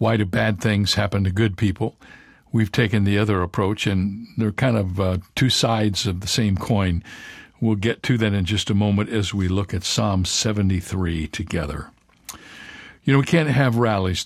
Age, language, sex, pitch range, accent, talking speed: 60-79, English, male, 100-120 Hz, American, 190 wpm